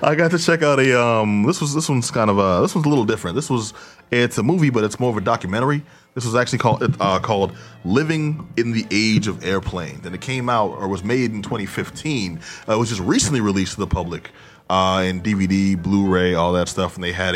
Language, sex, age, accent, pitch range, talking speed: English, male, 20-39, American, 90-120 Hz, 245 wpm